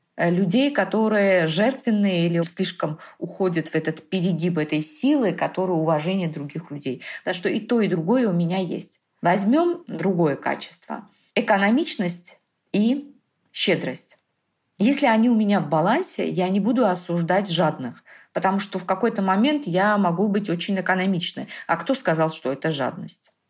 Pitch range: 175-230 Hz